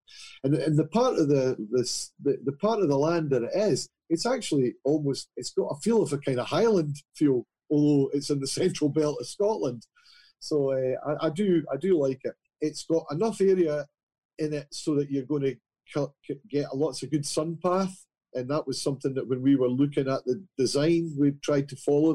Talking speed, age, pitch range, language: 210 wpm, 40-59, 125-150 Hz, English